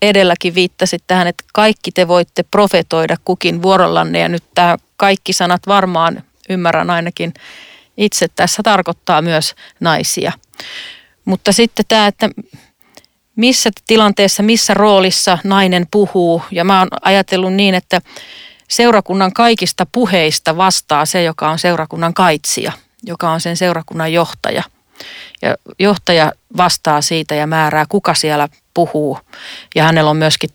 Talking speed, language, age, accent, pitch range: 130 wpm, Finnish, 40-59, native, 160-195 Hz